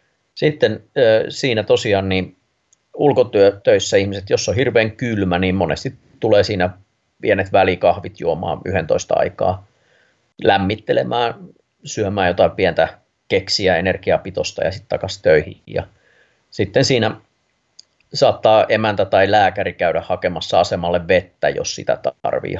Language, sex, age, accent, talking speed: Finnish, male, 30-49, native, 115 wpm